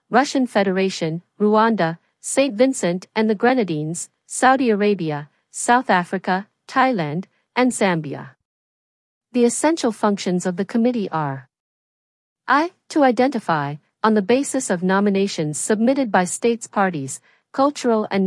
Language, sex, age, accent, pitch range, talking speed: English, female, 50-69, American, 180-240 Hz, 120 wpm